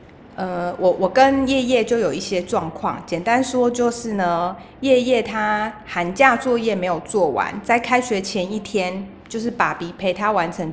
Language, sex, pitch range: Chinese, female, 180-245 Hz